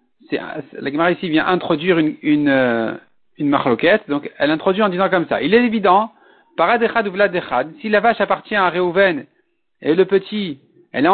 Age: 50-69